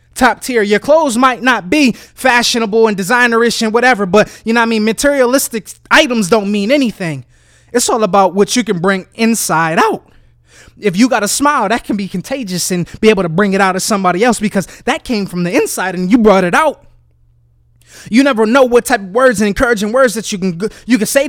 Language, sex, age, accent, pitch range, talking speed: English, male, 20-39, American, 195-255 Hz, 220 wpm